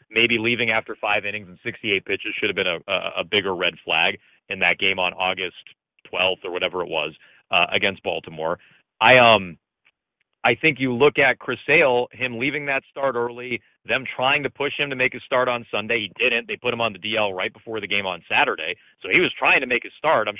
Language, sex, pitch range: English, male, 110-140 Hz